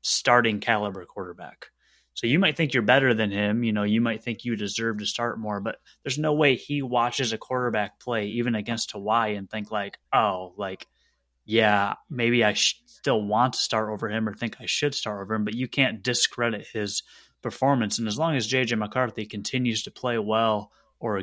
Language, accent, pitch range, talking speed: English, American, 105-120 Hz, 200 wpm